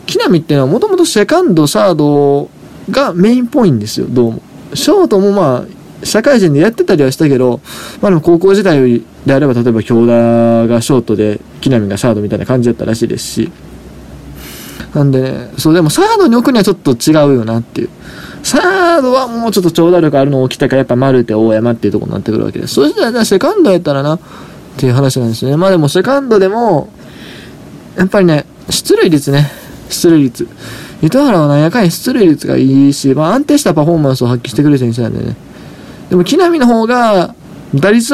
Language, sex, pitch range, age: Japanese, male, 125-190 Hz, 20-39